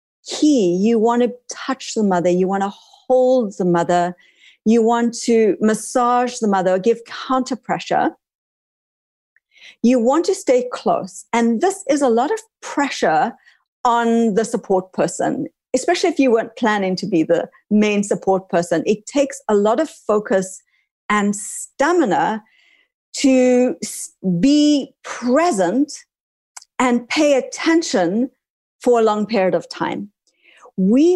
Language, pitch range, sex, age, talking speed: English, 205-275 Hz, female, 50-69, 135 wpm